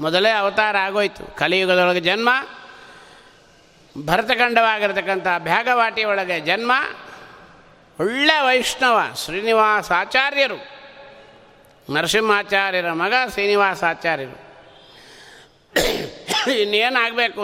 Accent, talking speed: native, 55 wpm